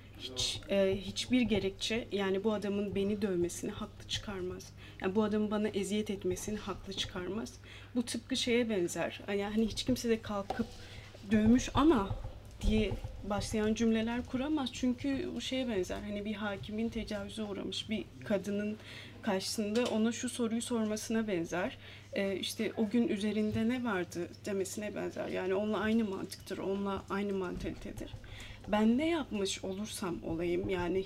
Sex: female